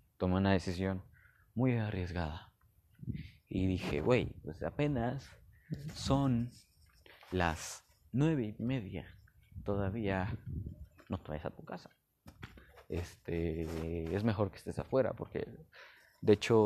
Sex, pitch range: male, 90-110 Hz